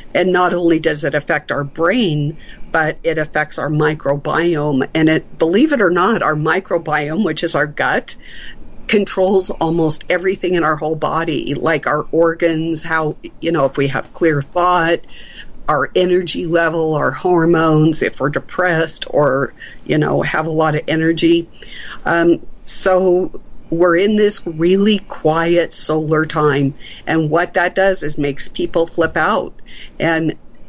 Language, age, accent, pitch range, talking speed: English, 50-69, American, 155-175 Hz, 155 wpm